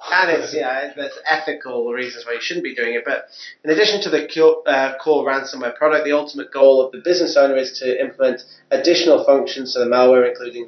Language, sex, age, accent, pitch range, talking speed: English, male, 30-49, British, 125-155 Hz, 210 wpm